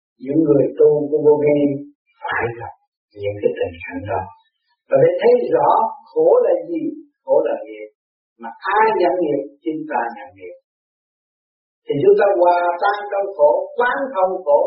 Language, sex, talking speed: Vietnamese, male, 125 wpm